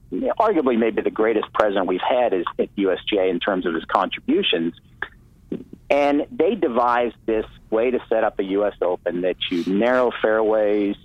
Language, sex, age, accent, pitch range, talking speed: English, male, 50-69, American, 110-125 Hz, 165 wpm